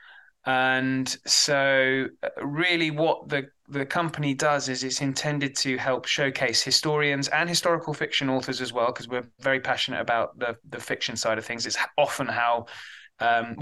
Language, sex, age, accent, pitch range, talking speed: English, male, 20-39, British, 120-145 Hz, 160 wpm